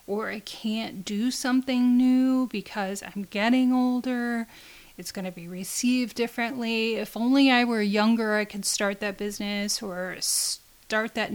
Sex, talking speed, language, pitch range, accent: female, 155 wpm, English, 205-240 Hz, American